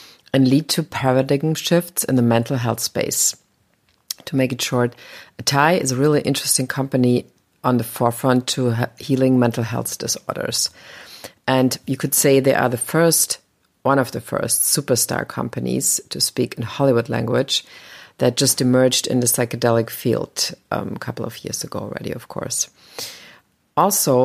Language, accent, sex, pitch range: English, German, female, 120-135 Hz